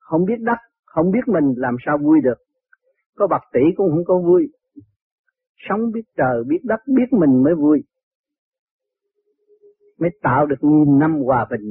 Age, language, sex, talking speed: 50-69, Vietnamese, male, 170 wpm